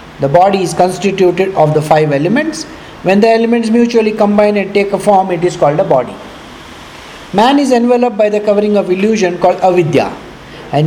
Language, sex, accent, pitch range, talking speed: English, male, Indian, 160-215 Hz, 180 wpm